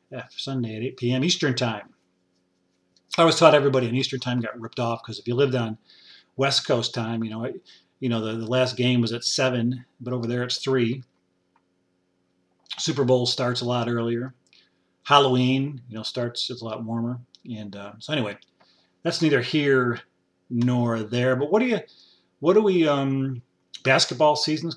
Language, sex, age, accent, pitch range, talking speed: English, male, 40-59, American, 110-130 Hz, 180 wpm